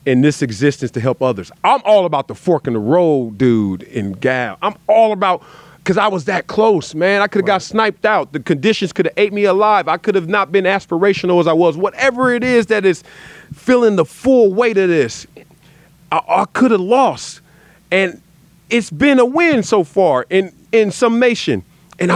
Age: 40-59